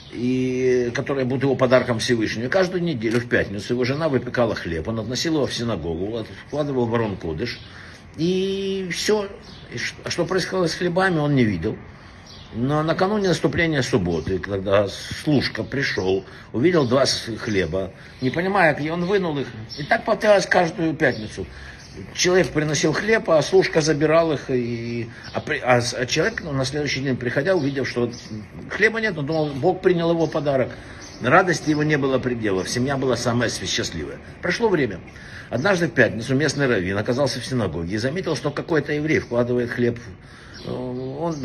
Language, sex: Russian, male